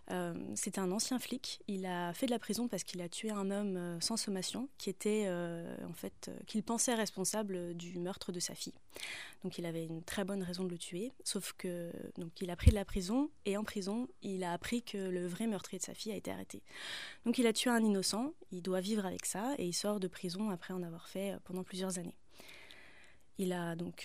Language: French